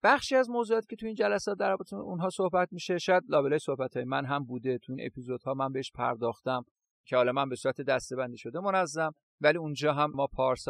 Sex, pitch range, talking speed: male, 135-170 Hz, 215 wpm